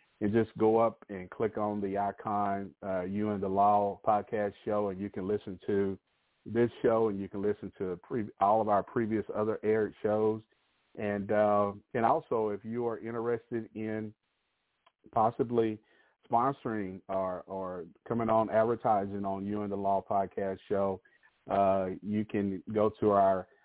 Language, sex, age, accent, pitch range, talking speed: English, male, 40-59, American, 95-110 Hz, 160 wpm